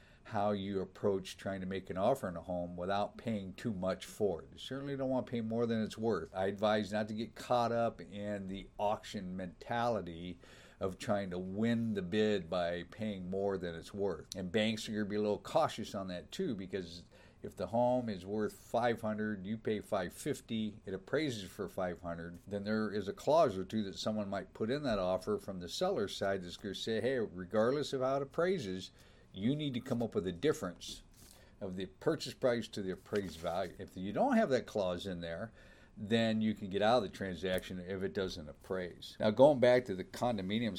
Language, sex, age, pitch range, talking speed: English, male, 50-69, 95-120 Hz, 210 wpm